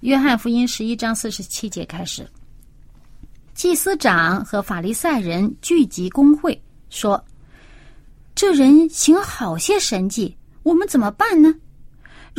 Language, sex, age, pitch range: Chinese, female, 30-49, 190-300 Hz